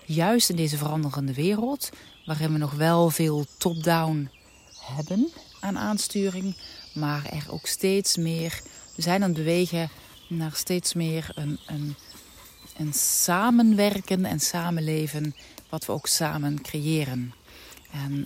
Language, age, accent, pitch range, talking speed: Dutch, 40-59, Dutch, 145-180 Hz, 130 wpm